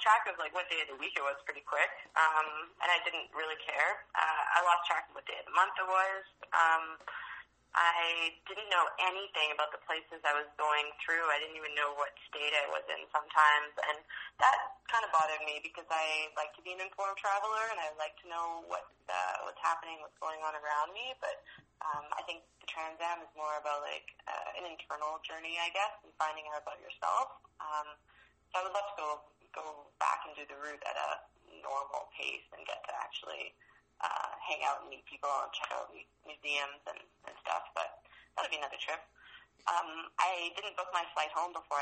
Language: English